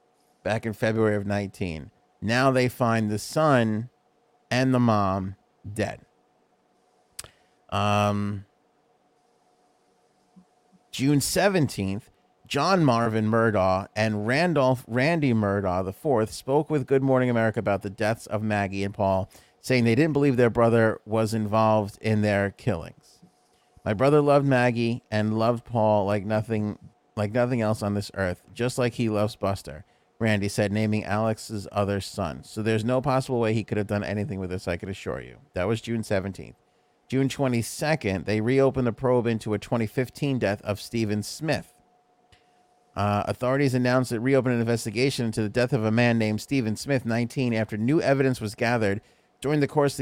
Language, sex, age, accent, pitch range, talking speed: English, male, 30-49, American, 105-125 Hz, 160 wpm